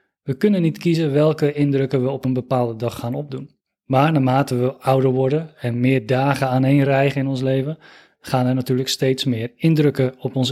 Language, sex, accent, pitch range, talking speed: Dutch, male, Dutch, 125-150 Hz, 195 wpm